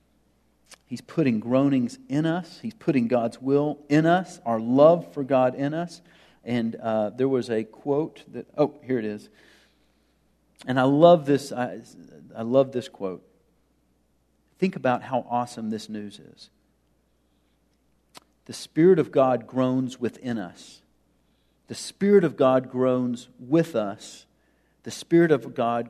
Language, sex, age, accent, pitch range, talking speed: English, male, 50-69, American, 105-140 Hz, 145 wpm